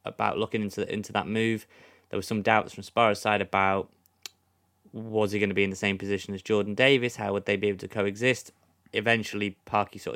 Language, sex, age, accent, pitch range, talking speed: English, male, 20-39, British, 100-115 Hz, 220 wpm